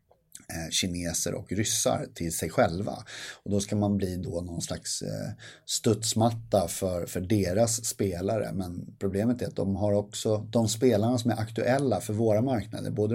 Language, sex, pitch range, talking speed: English, male, 95-115 Hz, 160 wpm